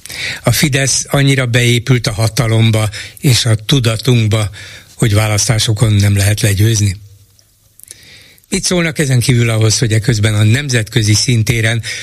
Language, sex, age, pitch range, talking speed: Hungarian, male, 60-79, 110-135 Hz, 125 wpm